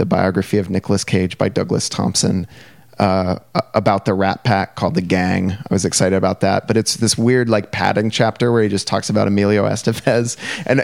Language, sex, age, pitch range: English, male, 30-49, 100-125 Hz